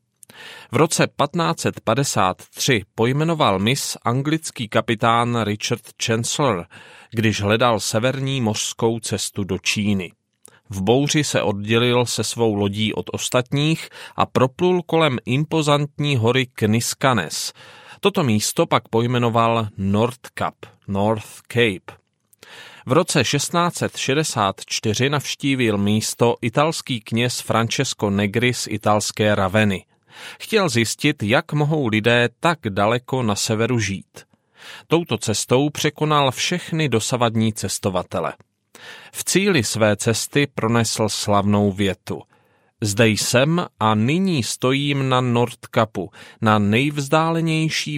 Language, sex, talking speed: Czech, male, 105 wpm